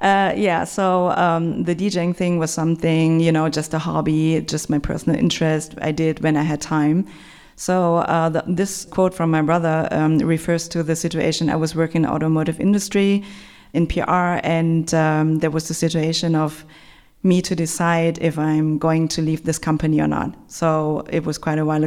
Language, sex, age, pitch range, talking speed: English, female, 30-49, 160-180 Hz, 190 wpm